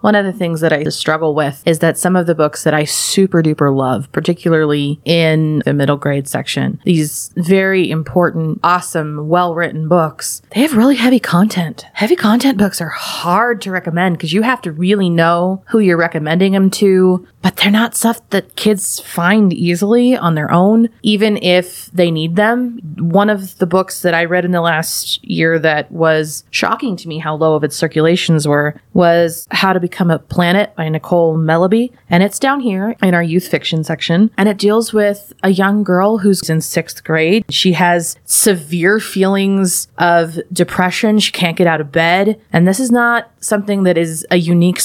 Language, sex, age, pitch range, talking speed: English, female, 20-39, 160-205 Hz, 190 wpm